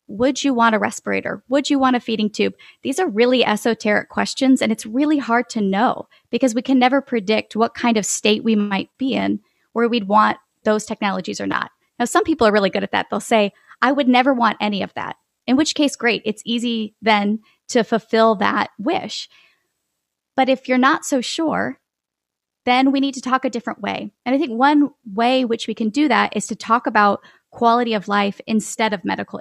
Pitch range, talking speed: 210-255 Hz, 210 wpm